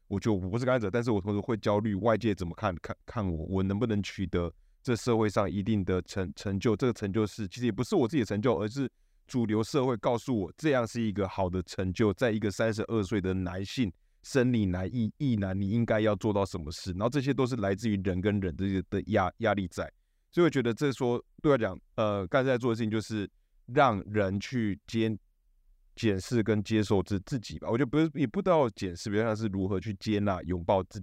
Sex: male